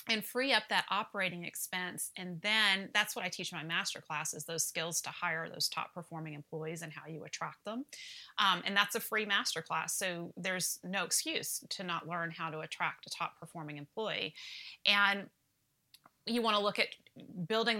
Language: English